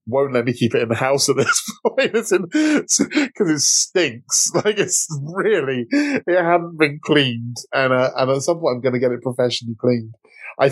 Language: English